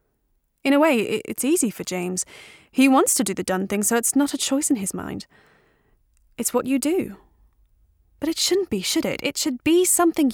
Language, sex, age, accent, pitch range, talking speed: English, female, 20-39, British, 220-285 Hz, 210 wpm